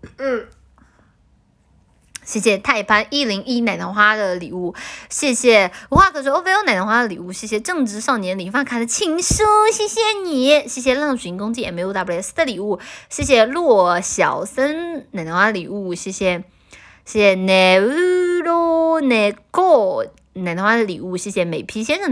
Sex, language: female, Chinese